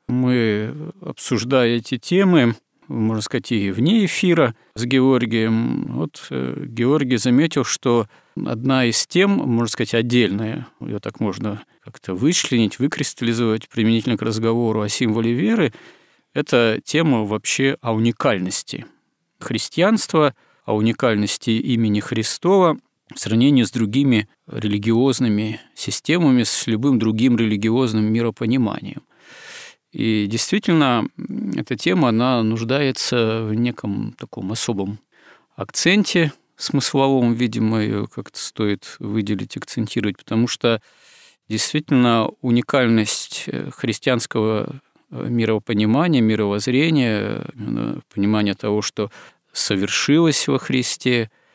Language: Russian